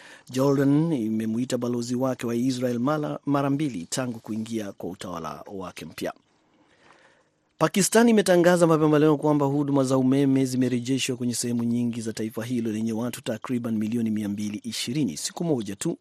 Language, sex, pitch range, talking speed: Swahili, male, 115-140 Hz, 135 wpm